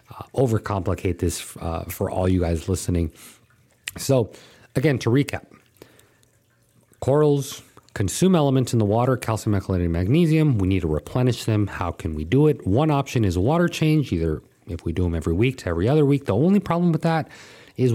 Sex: male